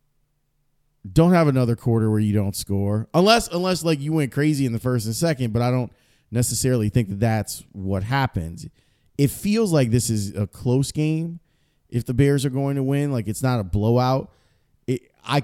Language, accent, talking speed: English, American, 195 wpm